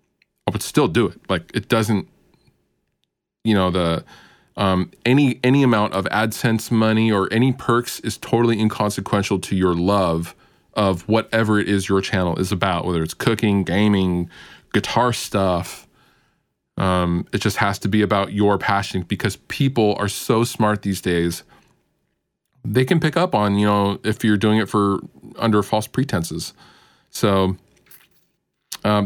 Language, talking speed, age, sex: English, 150 wpm, 20-39, male